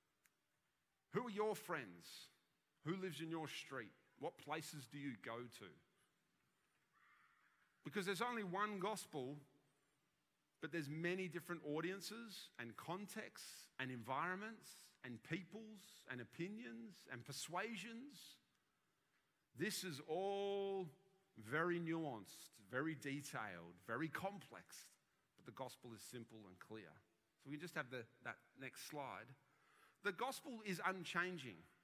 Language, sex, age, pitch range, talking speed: English, male, 40-59, 135-185 Hz, 115 wpm